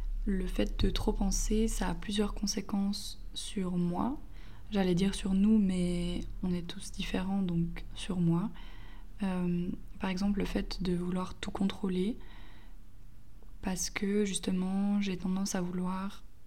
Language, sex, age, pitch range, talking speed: French, female, 20-39, 175-195 Hz, 140 wpm